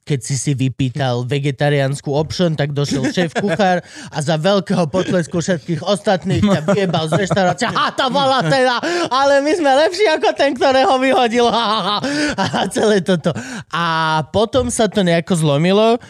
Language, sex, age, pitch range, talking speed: Slovak, male, 20-39, 145-185 Hz, 150 wpm